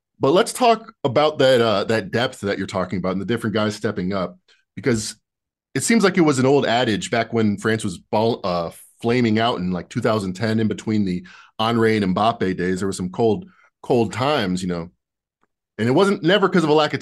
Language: English